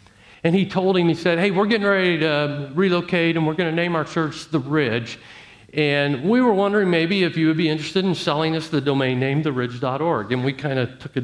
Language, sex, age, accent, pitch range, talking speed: English, male, 50-69, American, 115-160 Hz, 235 wpm